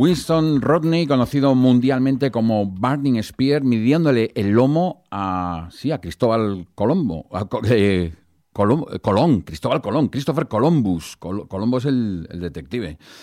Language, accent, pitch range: Spanish, Spanish, 100-130 Hz